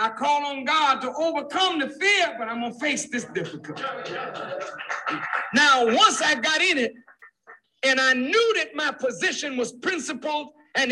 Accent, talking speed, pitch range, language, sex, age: American, 160 wpm, 265-360 Hz, French, male, 60-79